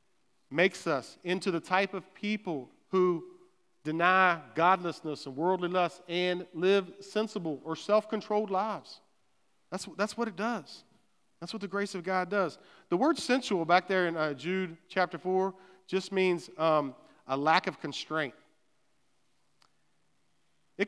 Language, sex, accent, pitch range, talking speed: English, male, American, 170-210 Hz, 140 wpm